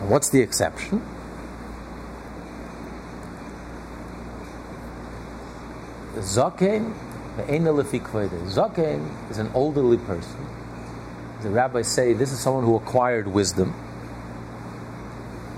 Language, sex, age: English, male, 50-69